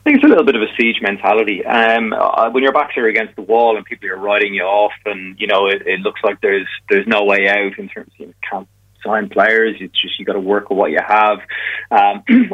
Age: 30-49